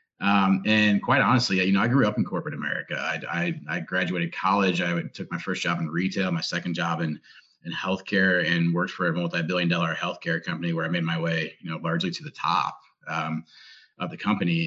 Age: 30-49